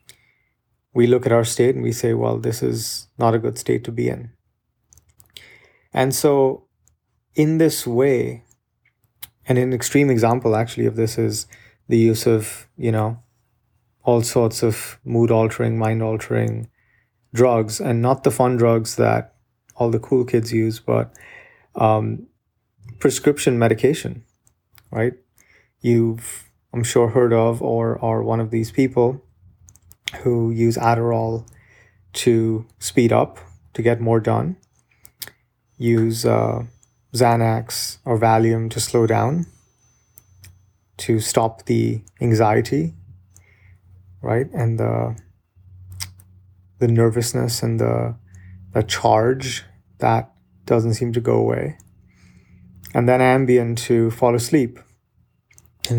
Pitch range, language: 110-120 Hz, English